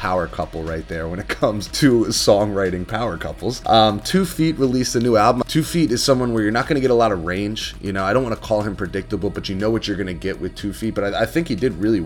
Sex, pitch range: male, 85-105 Hz